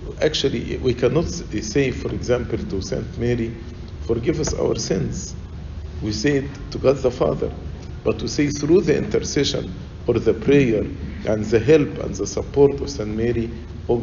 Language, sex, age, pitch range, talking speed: English, male, 50-69, 80-120 Hz, 165 wpm